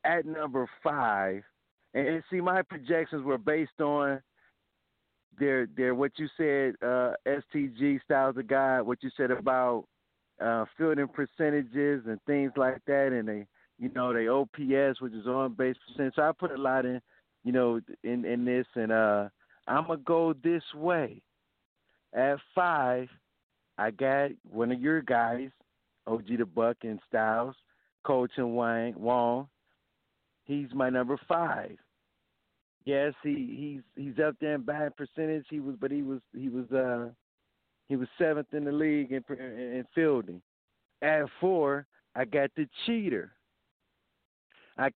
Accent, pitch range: American, 125-155 Hz